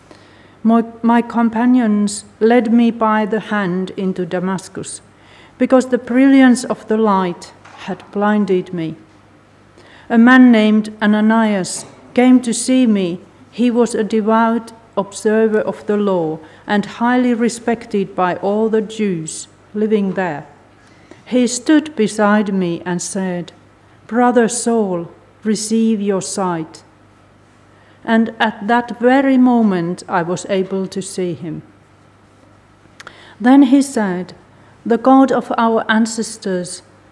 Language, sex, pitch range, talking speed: English, female, 180-230 Hz, 120 wpm